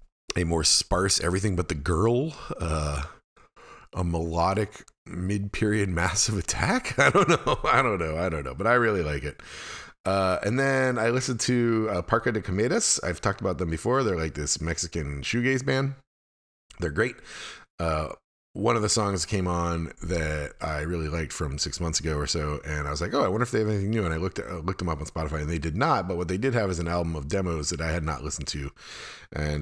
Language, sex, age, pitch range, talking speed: English, male, 30-49, 75-100 Hz, 225 wpm